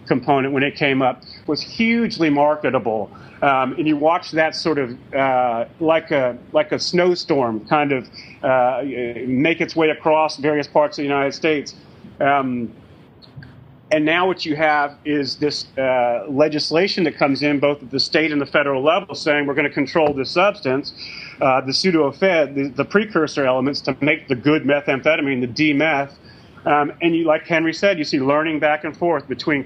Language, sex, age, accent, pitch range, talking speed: English, male, 40-59, American, 140-165 Hz, 180 wpm